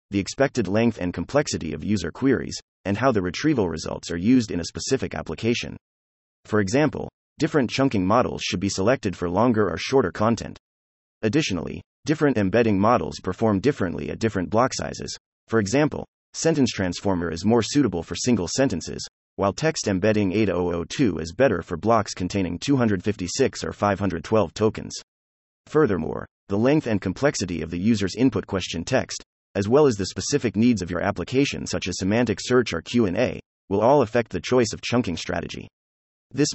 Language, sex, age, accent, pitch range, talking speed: English, male, 30-49, American, 85-120 Hz, 165 wpm